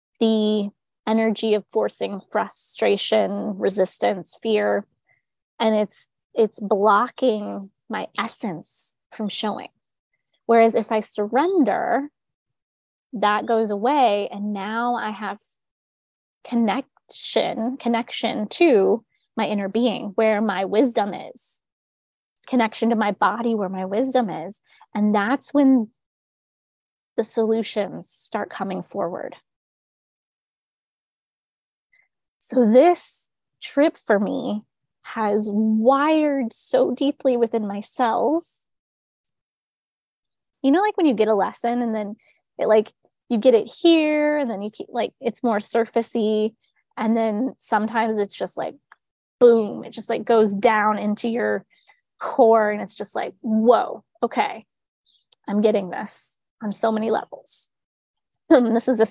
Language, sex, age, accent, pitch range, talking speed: English, female, 20-39, American, 210-245 Hz, 120 wpm